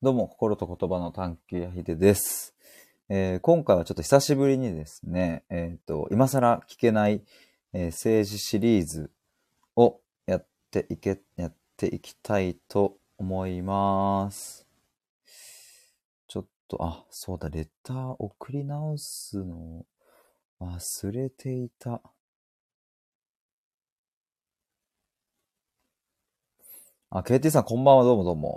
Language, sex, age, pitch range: Japanese, male, 30-49, 90-125 Hz